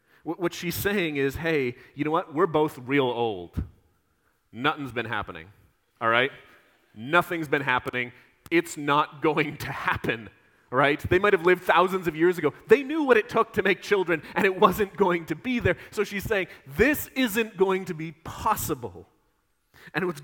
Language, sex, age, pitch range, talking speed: English, male, 30-49, 120-165 Hz, 180 wpm